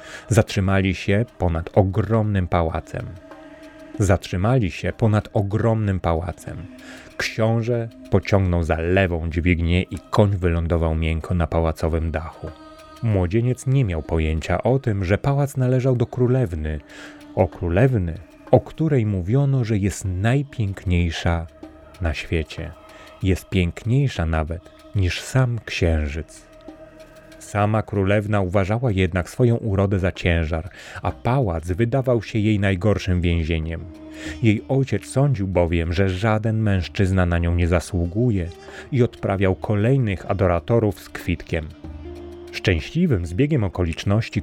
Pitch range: 85-115 Hz